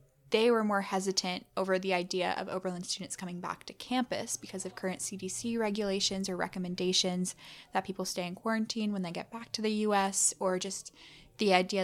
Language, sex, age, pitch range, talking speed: English, female, 10-29, 185-215 Hz, 190 wpm